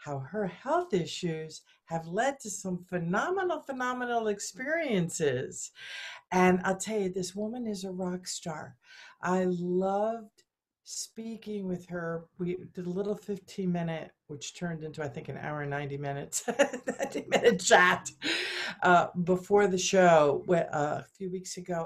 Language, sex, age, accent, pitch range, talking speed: English, female, 50-69, American, 145-190 Hz, 150 wpm